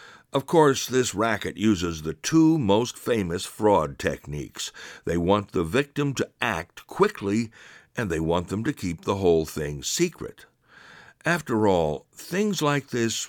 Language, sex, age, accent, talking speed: English, male, 60-79, American, 150 wpm